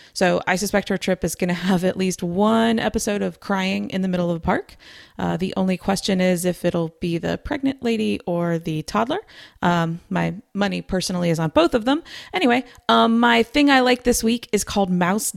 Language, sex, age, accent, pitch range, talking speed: English, female, 30-49, American, 175-215 Hz, 215 wpm